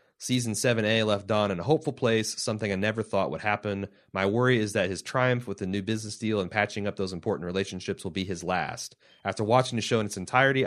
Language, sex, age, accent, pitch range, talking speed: English, male, 30-49, American, 100-120 Hz, 235 wpm